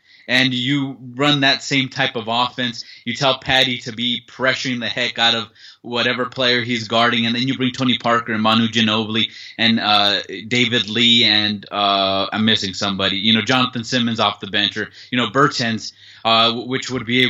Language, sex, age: English, male, 20-39